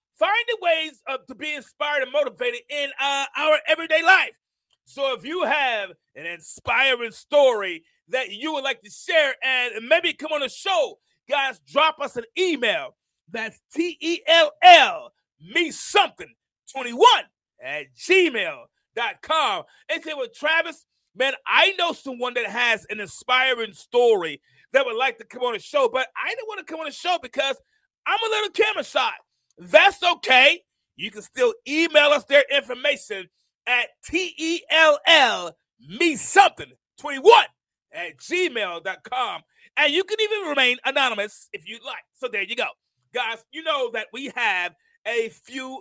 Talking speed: 155 wpm